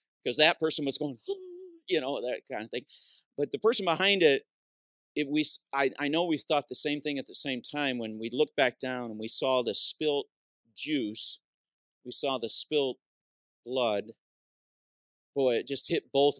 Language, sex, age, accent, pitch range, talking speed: English, male, 40-59, American, 115-155 Hz, 185 wpm